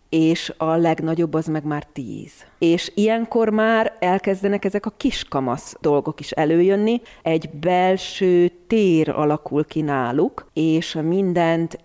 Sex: female